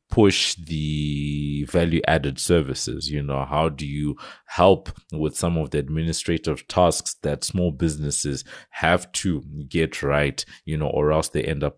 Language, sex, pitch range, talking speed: English, male, 75-85 Hz, 155 wpm